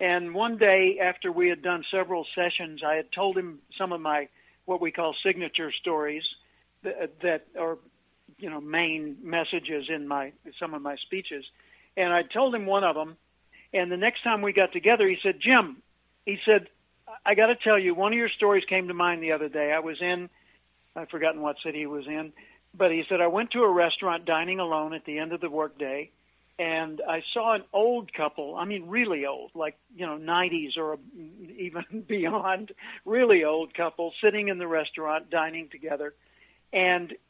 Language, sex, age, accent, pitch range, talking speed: English, male, 60-79, American, 160-195 Hz, 195 wpm